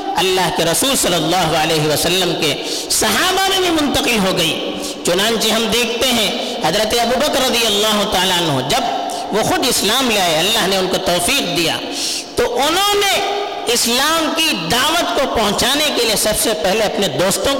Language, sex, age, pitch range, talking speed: Urdu, female, 50-69, 205-320 Hz, 70 wpm